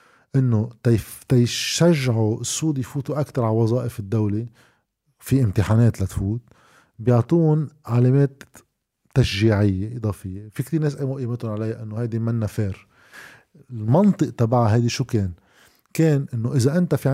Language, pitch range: Arabic, 110-145 Hz